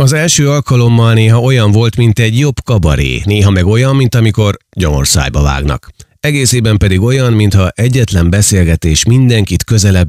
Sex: male